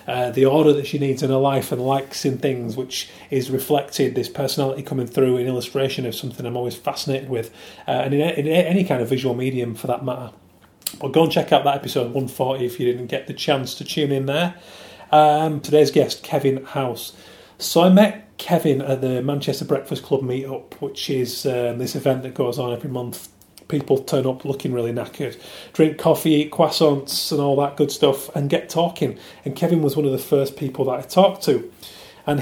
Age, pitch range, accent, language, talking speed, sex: 30-49, 130-150 Hz, British, English, 215 wpm, male